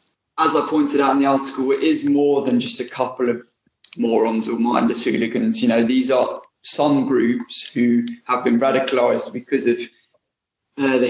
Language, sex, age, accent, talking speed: English, male, 20-39, British, 180 wpm